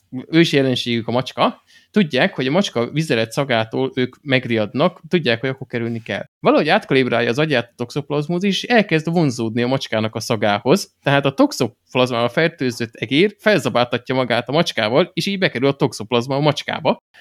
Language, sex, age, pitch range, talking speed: Hungarian, male, 20-39, 120-155 Hz, 160 wpm